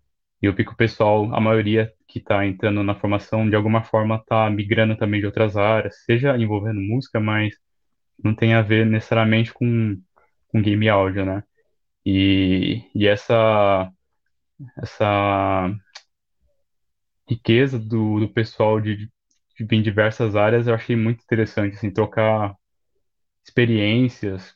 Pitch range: 100-115 Hz